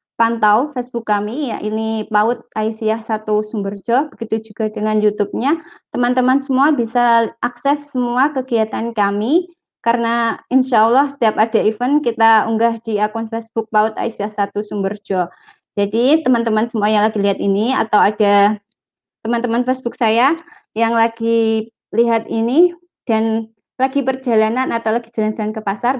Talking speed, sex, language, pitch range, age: 135 wpm, female, Indonesian, 215-255 Hz, 20-39